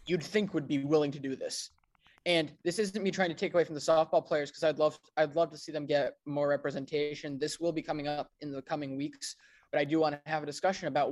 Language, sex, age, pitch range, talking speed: English, male, 20-39, 145-175 Hz, 270 wpm